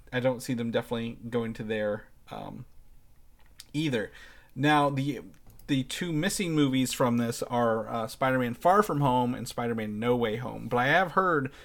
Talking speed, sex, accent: 170 wpm, male, American